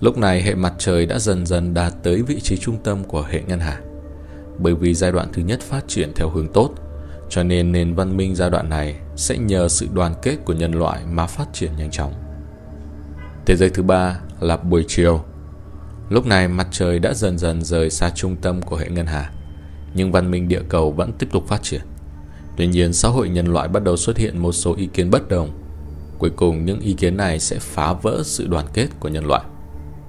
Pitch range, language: 75-95 Hz, Vietnamese